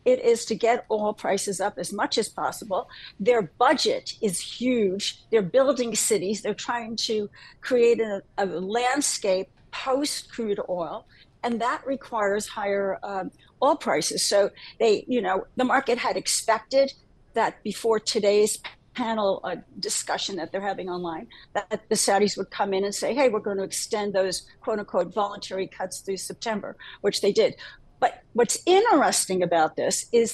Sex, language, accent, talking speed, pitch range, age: female, English, American, 160 wpm, 195-245 Hz, 60-79